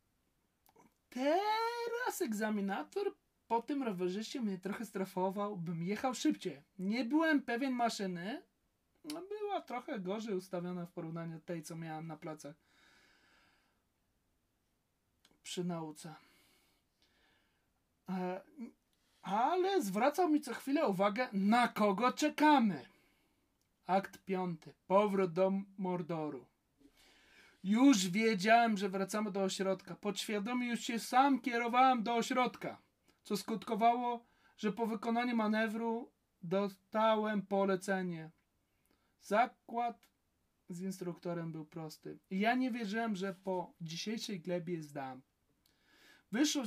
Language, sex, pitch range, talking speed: Polish, male, 180-245 Hz, 100 wpm